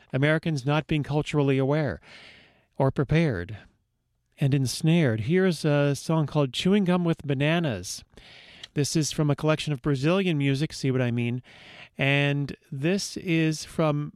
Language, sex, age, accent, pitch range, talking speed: English, male, 40-59, American, 135-165 Hz, 140 wpm